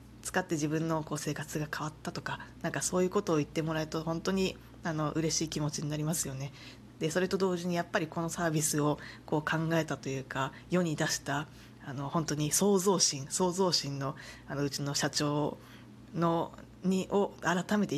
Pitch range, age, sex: 145-180 Hz, 20-39, female